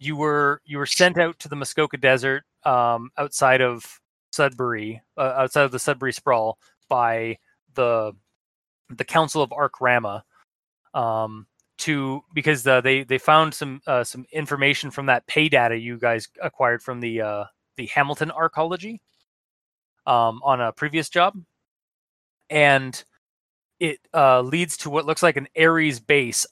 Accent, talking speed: American, 150 wpm